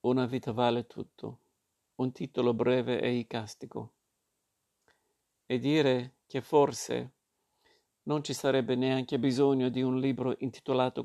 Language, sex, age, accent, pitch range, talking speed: Italian, male, 50-69, native, 125-135 Hz, 120 wpm